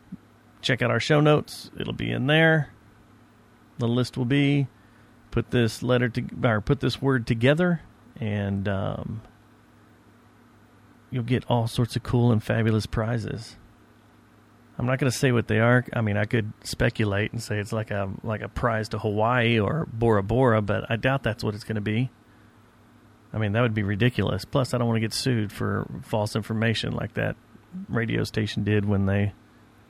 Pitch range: 110-125 Hz